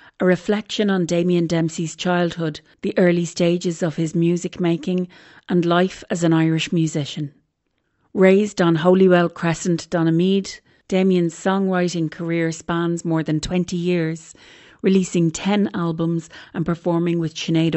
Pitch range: 160-185 Hz